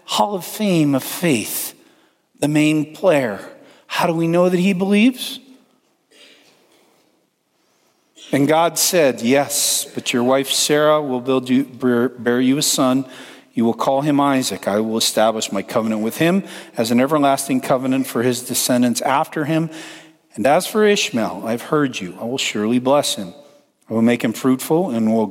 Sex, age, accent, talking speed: male, 50-69, American, 160 wpm